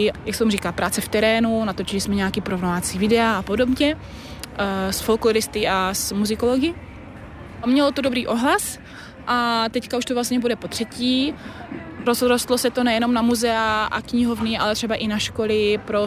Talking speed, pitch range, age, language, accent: 165 wpm, 200-230 Hz, 20-39, Czech, native